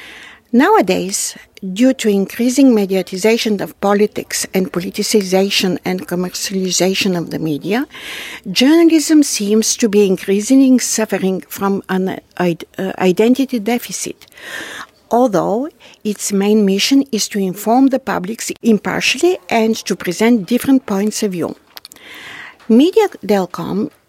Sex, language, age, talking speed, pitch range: female, English, 60-79, 105 wpm, 190-235 Hz